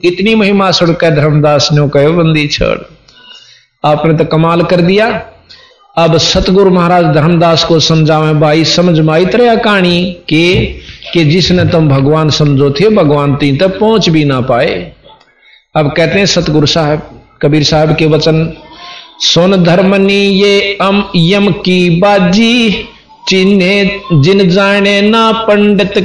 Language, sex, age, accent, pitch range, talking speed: Hindi, male, 50-69, native, 160-200 Hz, 130 wpm